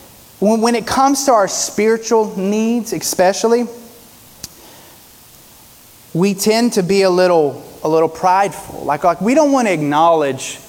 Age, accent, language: 30-49, American, English